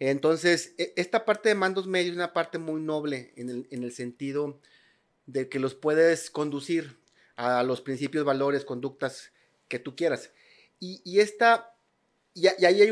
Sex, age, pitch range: male, 40-59, 145-180 Hz